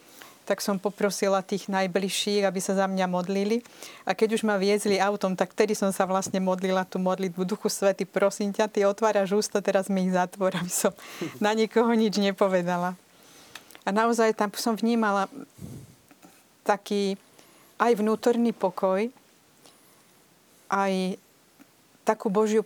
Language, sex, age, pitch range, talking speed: Slovak, female, 40-59, 185-210 Hz, 140 wpm